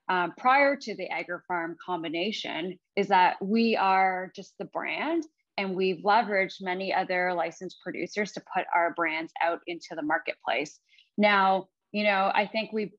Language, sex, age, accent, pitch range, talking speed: English, female, 20-39, American, 180-225 Hz, 155 wpm